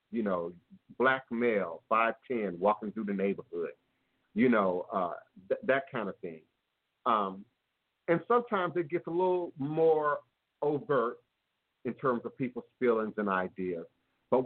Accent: American